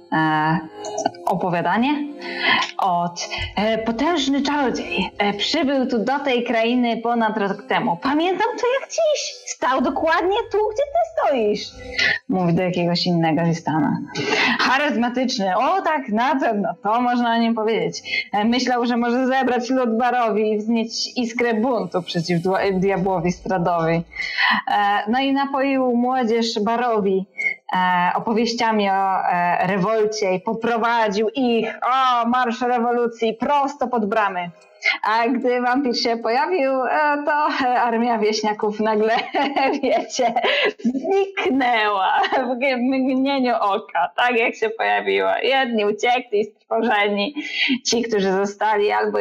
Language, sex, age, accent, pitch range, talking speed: Polish, female, 20-39, native, 190-255 Hz, 115 wpm